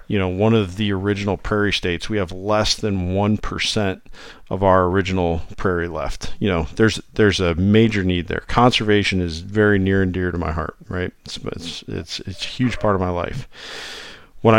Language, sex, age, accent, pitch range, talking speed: English, male, 50-69, American, 90-105 Hz, 200 wpm